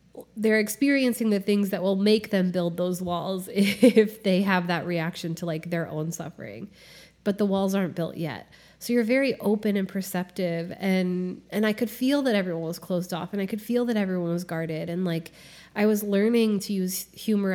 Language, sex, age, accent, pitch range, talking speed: English, female, 20-39, American, 175-210 Hz, 200 wpm